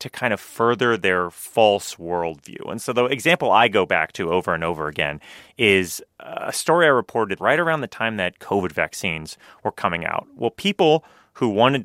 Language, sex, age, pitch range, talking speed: English, male, 30-49, 95-130 Hz, 195 wpm